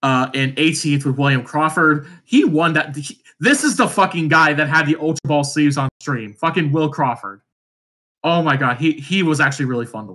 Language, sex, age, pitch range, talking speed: English, male, 20-39, 125-155 Hz, 205 wpm